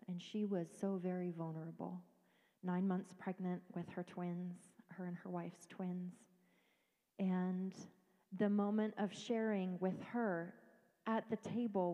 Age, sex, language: 30-49, female, English